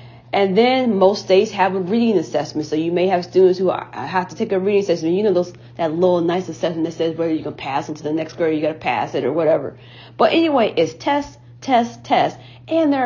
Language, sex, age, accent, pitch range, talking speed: English, female, 40-59, American, 160-255 Hz, 250 wpm